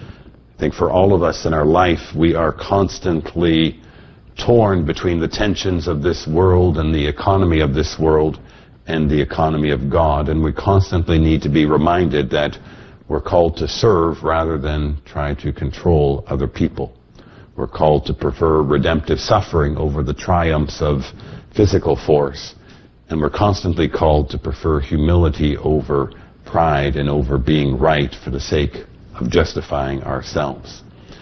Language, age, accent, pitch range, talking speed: English, 60-79, American, 75-85 Hz, 155 wpm